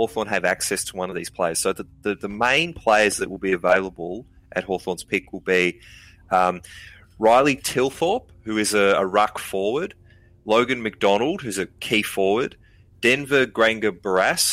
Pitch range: 90-105 Hz